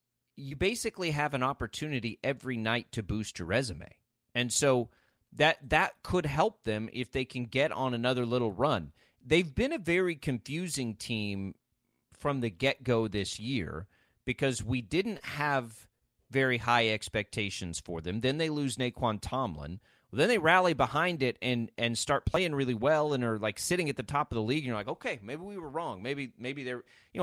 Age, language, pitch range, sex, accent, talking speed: 30-49, English, 115-145 Hz, male, American, 190 wpm